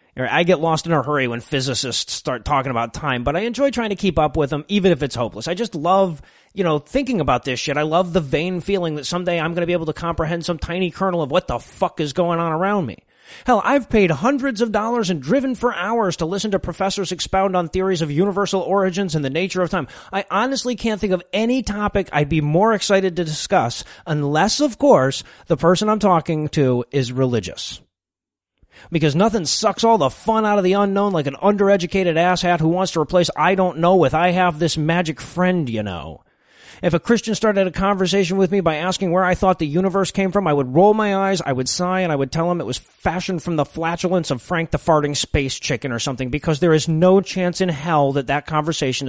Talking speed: 235 wpm